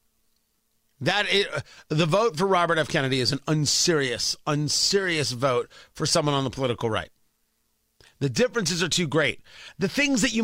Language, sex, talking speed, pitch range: English, male, 155 wpm, 135-185 Hz